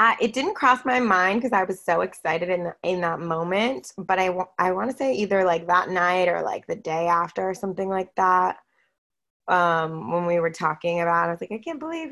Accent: American